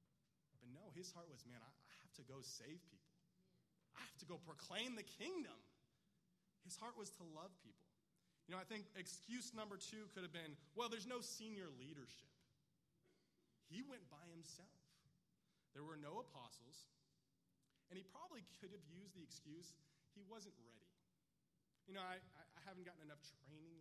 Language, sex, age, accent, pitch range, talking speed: English, male, 30-49, American, 140-180 Hz, 165 wpm